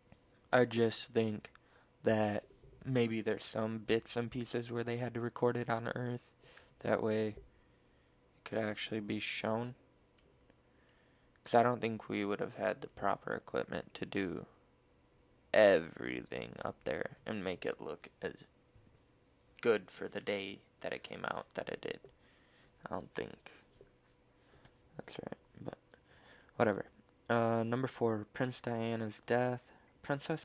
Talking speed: 140 wpm